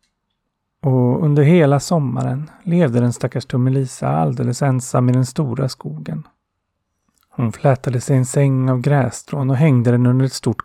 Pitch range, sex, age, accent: 120-140 Hz, male, 30-49, native